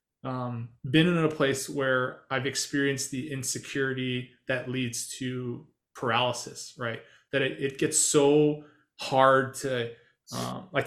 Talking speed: 135 wpm